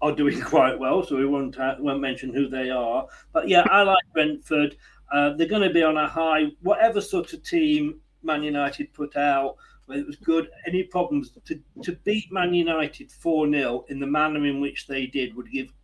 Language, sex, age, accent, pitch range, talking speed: English, male, 40-59, British, 145-225 Hz, 205 wpm